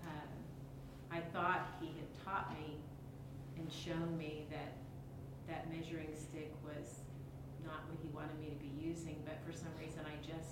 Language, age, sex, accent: English, 40-59, female, American